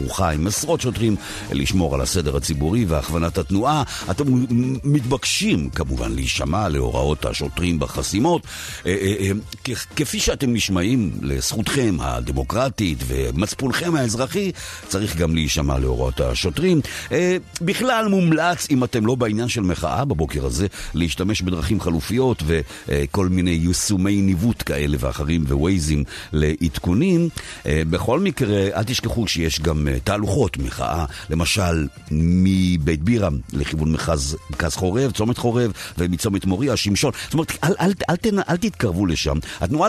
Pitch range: 80-120 Hz